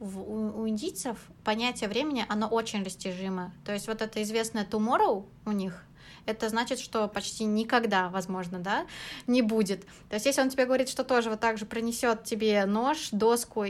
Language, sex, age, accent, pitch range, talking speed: Russian, female, 20-39, native, 200-230 Hz, 170 wpm